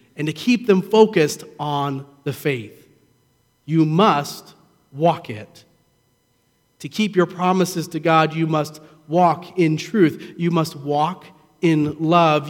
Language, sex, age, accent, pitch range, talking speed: English, male, 40-59, American, 155-195 Hz, 135 wpm